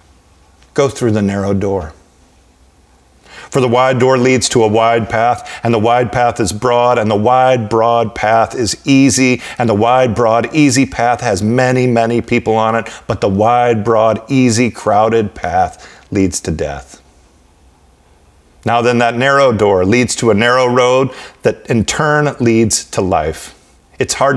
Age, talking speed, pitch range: 40-59, 165 wpm, 95-125 Hz